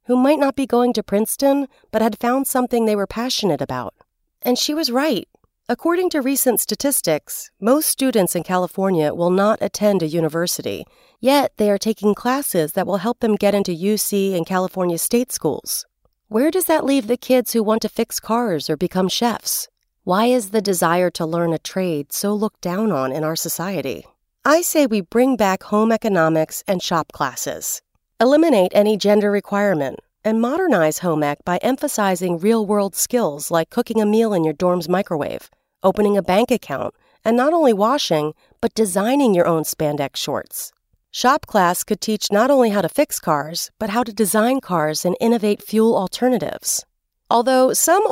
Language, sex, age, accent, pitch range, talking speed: English, female, 40-59, American, 175-245 Hz, 175 wpm